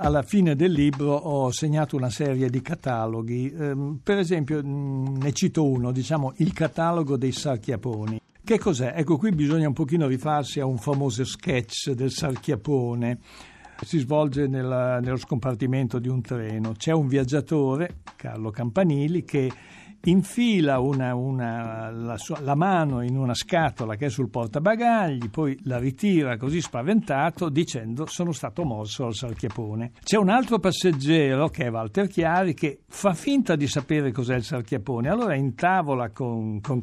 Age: 60-79